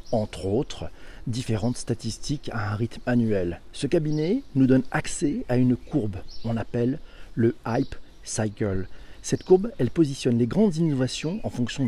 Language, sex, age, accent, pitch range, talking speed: French, male, 40-59, French, 115-140 Hz, 150 wpm